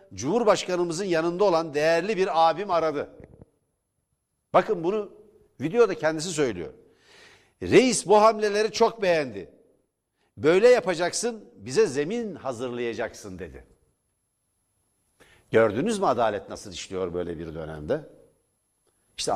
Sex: male